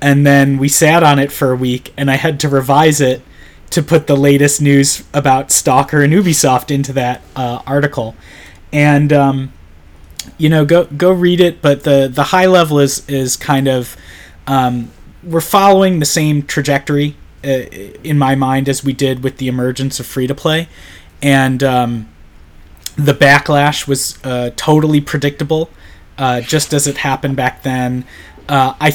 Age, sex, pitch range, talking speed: 30-49, male, 130-155 Hz, 165 wpm